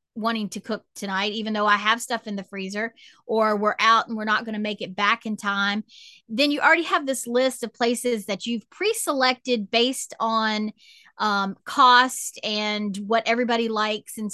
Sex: female